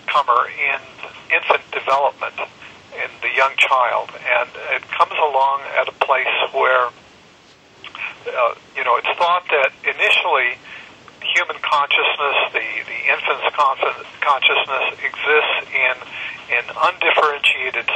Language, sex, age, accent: English, male, 50-69, American